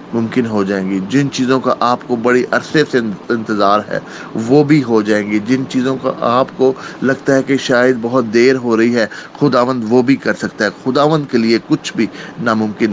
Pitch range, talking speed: 115-135 Hz, 210 wpm